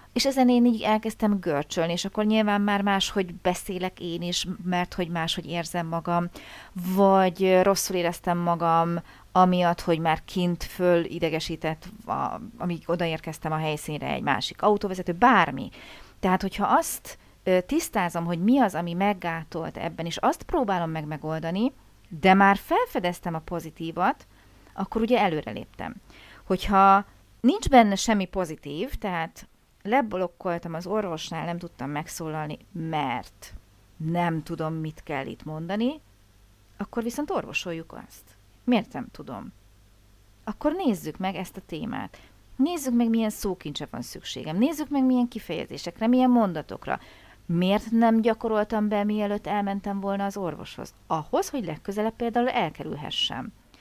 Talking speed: 130 wpm